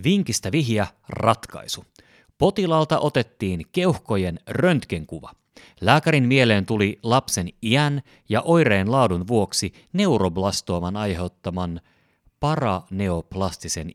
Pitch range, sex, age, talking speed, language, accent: 90-130 Hz, male, 30-49, 80 wpm, Finnish, native